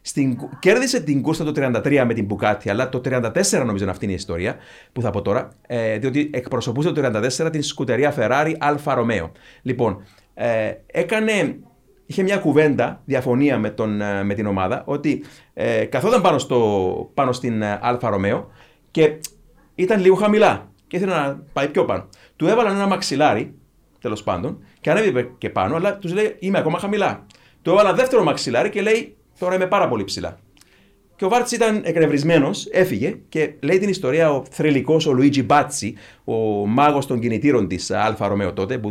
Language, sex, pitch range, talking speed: Greek, male, 110-165 Hz, 175 wpm